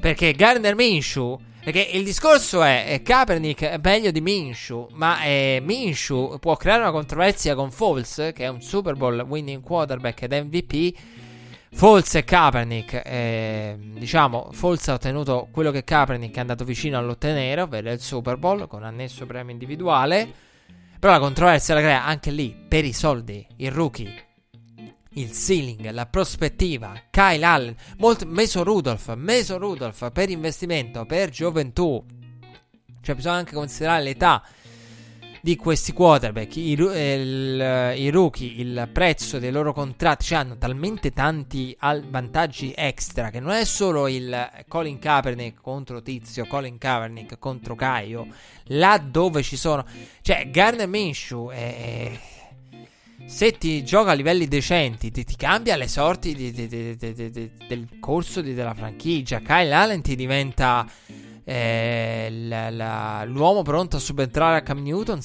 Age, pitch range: 20-39, 120-165 Hz